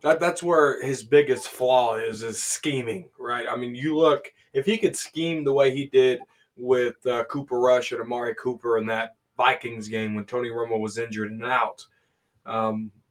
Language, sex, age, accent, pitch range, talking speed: English, male, 20-39, American, 125-165 Hz, 190 wpm